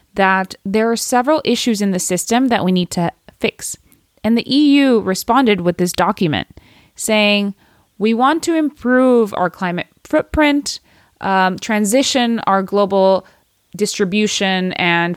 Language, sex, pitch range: English, female, 185-240 Hz